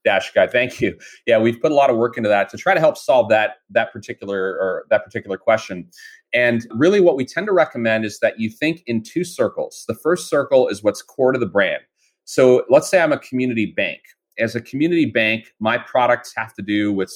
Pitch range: 100-130 Hz